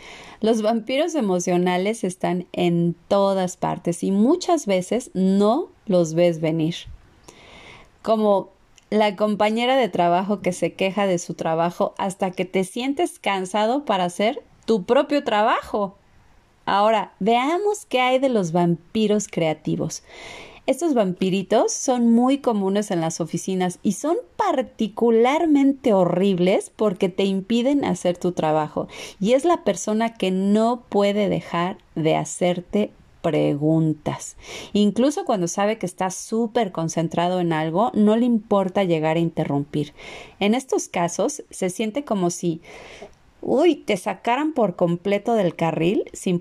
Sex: female